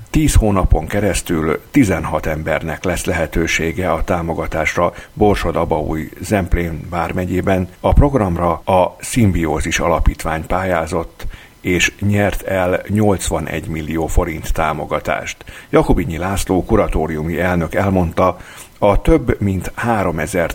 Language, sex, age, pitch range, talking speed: Hungarian, male, 50-69, 80-105 Hz, 100 wpm